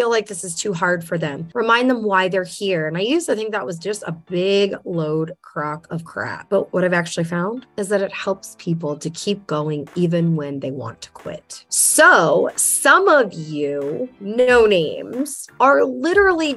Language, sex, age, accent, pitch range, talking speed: English, female, 30-49, American, 190-255 Hz, 200 wpm